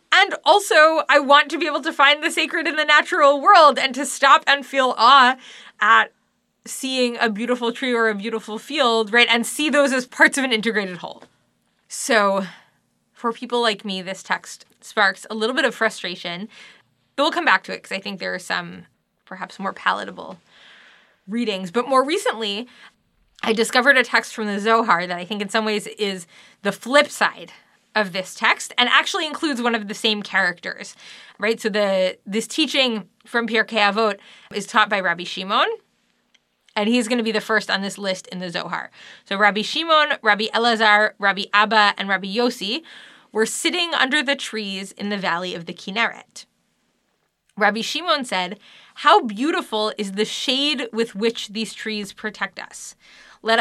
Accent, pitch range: American, 205-265 Hz